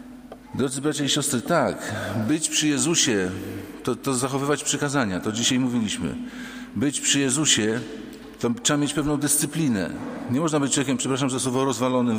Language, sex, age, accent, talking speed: English, male, 50-69, Polish, 155 wpm